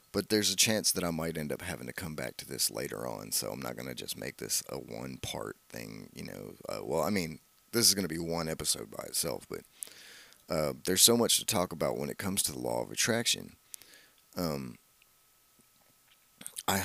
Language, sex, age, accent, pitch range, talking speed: English, male, 30-49, American, 75-90 Hz, 215 wpm